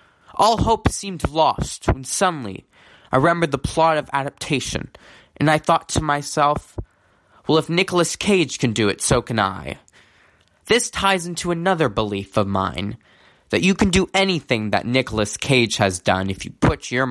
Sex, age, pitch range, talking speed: male, 20-39, 125-180 Hz, 170 wpm